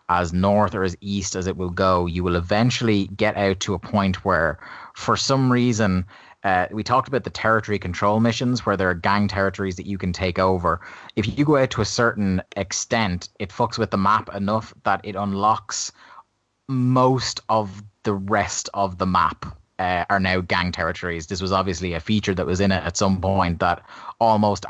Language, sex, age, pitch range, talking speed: English, male, 30-49, 90-105 Hz, 200 wpm